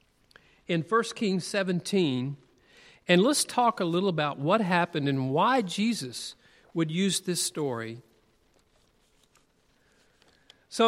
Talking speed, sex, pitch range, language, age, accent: 110 wpm, male, 145-195 Hz, English, 50-69, American